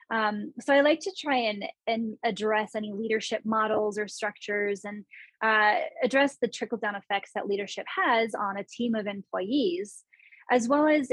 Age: 20-39